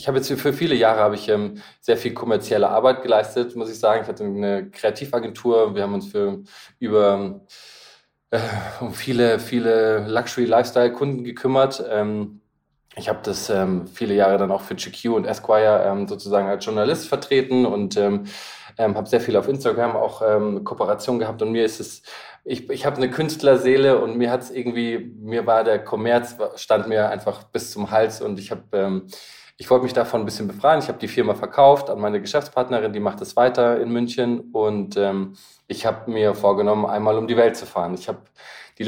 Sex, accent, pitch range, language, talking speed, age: male, German, 105-130 Hz, German, 195 wpm, 20-39